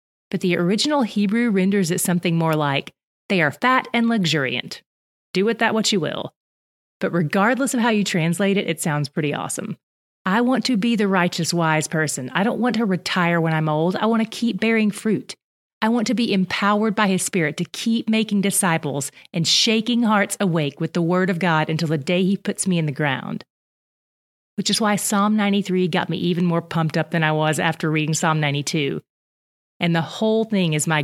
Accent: American